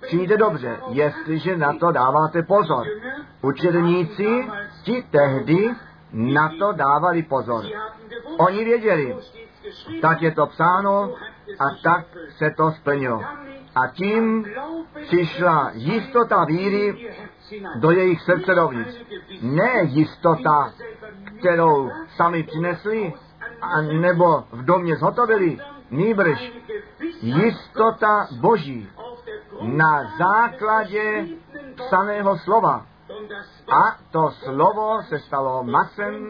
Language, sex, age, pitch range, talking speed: Czech, male, 50-69, 160-215 Hz, 90 wpm